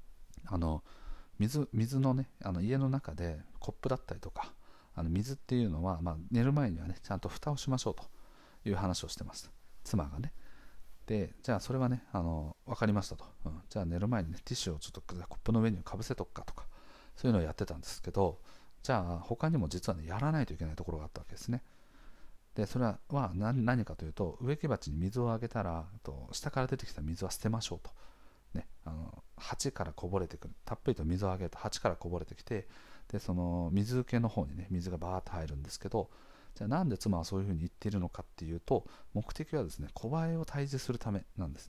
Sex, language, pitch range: male, Japanese, 85-120 Hz